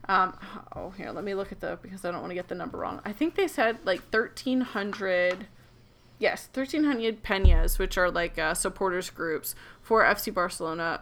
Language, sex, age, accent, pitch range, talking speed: English, female, 20-39, American, 180-220 Hz, 200 wpm